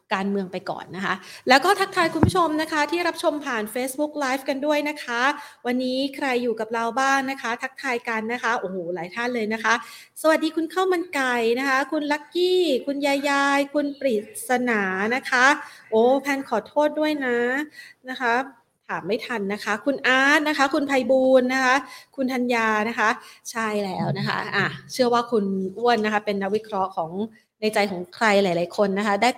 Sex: female